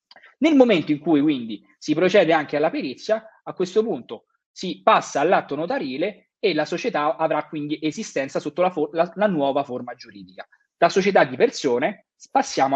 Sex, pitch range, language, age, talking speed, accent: male, 140-205 Hz, Italian, 30-49, 170 wpm, native